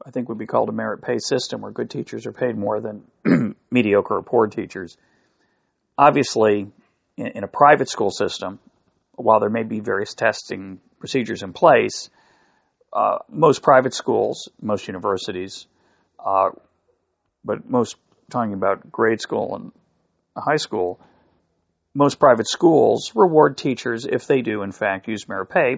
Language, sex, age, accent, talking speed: English, male, 40-59, American, 145 wpm